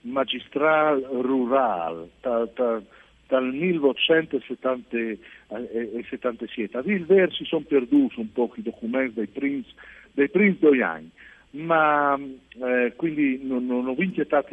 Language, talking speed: Italian, 105 wpm